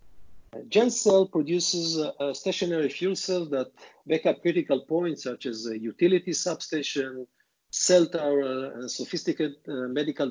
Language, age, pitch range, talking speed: English, 50-69, 140-185 Hz, 130 wpm